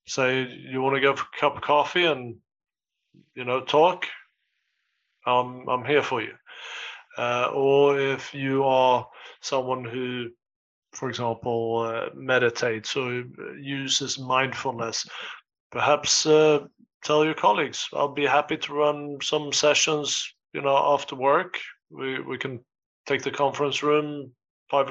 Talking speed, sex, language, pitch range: 140 wpm, male, English, 125-145 Hz